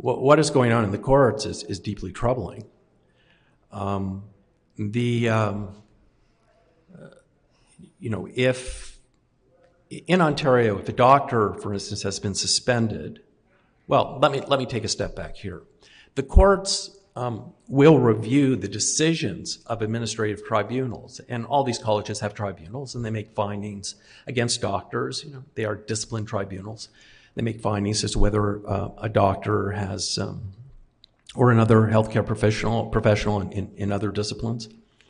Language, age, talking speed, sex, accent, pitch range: English, 50-69, 150 wpm, male, American, 100-125 Hz